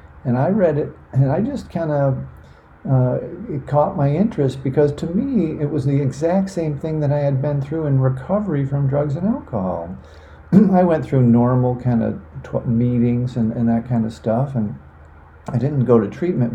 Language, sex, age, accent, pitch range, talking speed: English, male, 50-69, American, 115-145 Hz, 195 wpm